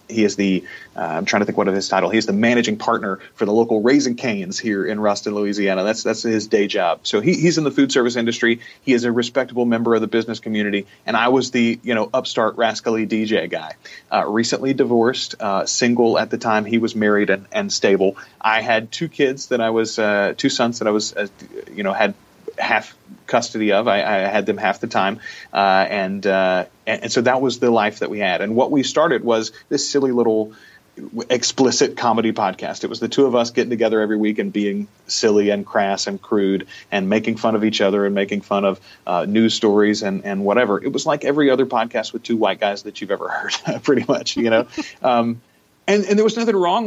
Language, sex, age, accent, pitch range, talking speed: English, male, 30-49, American, 105-125 Hz, 230 wpm